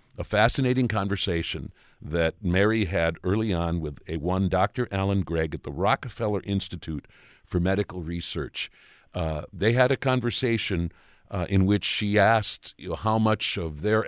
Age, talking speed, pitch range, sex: 50-69, 150 wpm, 95-115 Hz, male